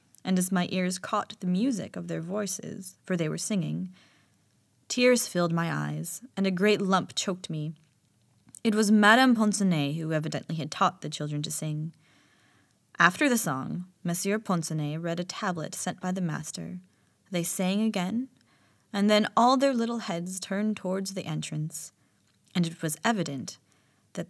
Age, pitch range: 20-39, 165-200 Hz